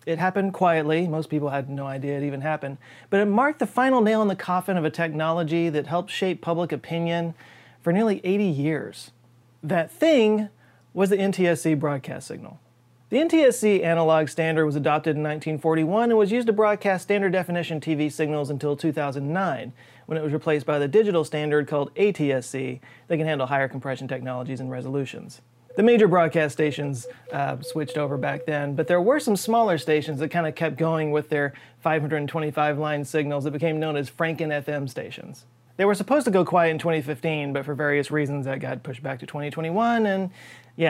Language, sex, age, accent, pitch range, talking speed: English, male, 30-49, American, 140-175 Hz, 180 wpm